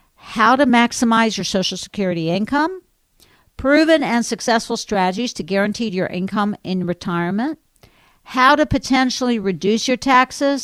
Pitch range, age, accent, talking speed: 190-255 Hz, 50-69, American, 130 wpm